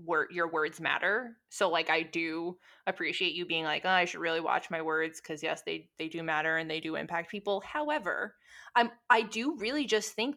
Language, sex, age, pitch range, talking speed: English, female, 20-39, 170-225 Hz, 215 wpm